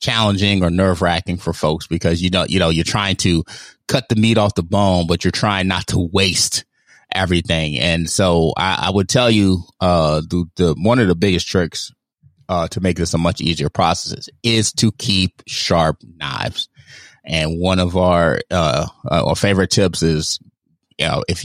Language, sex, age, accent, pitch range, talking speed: English, male, 30-49, American, 85-100 Hz, 190 wpm